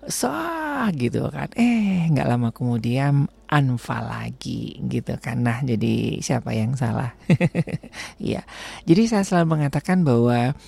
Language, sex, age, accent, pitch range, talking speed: Indonesian, male, 40-59, native, 125-195 Hz, 125 wpm